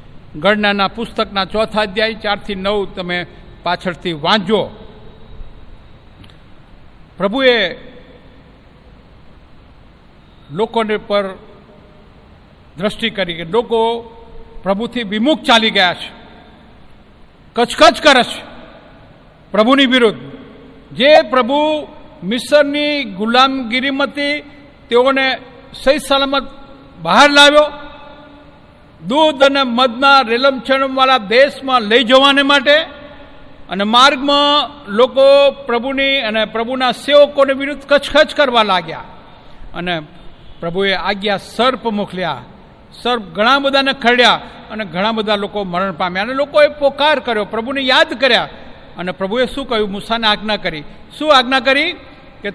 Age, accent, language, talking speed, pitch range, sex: 50-69, native, Gujarati, 95 wpm, 205-275 Hz, male